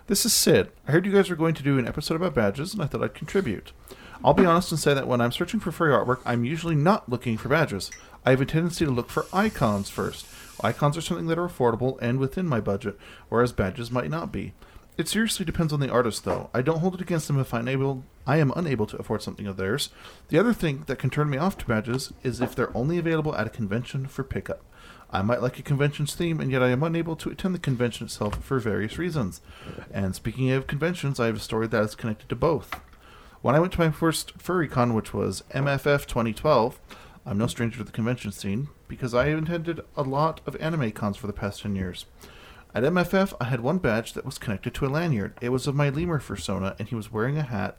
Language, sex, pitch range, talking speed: English, male, 110-160 Hz, 240 wpm